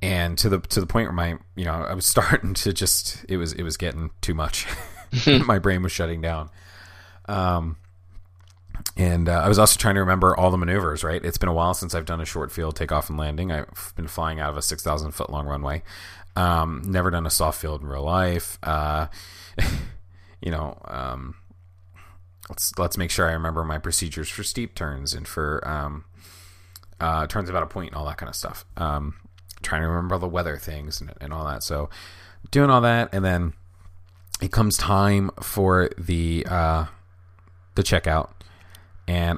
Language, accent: English, American